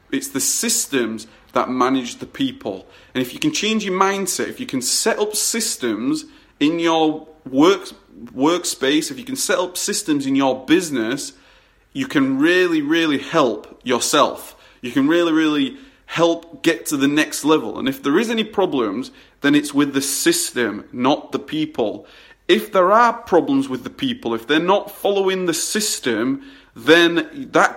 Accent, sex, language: British, male, English